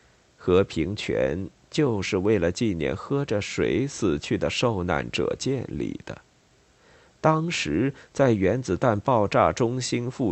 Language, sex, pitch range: Chinese, male, 95-130 Hz